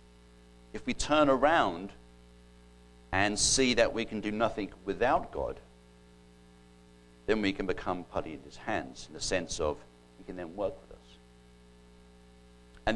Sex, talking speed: male, 150 wpm